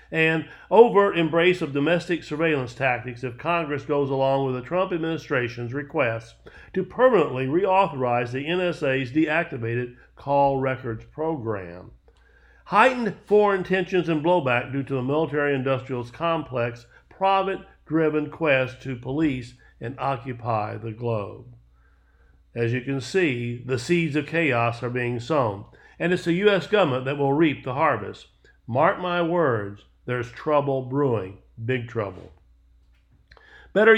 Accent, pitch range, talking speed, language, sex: American, 125-170 Hz, 130 wpm, English, male